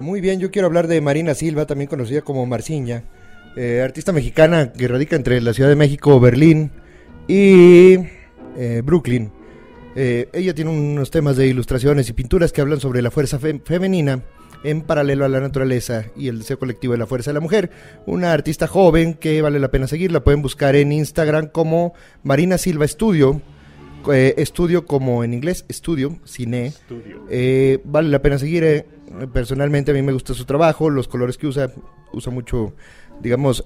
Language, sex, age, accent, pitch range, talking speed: Spanish, male, 30-49, Mexican, 125-160 Hz, 175 wpm